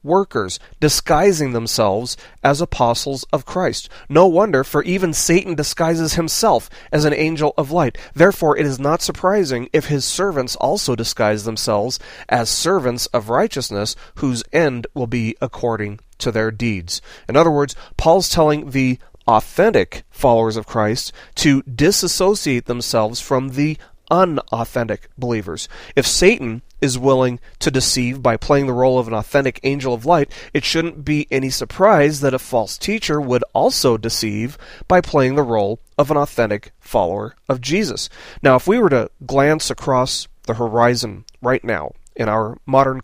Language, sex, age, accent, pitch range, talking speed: English, male, 30-49, American, 115-150 Hz, 155 wpm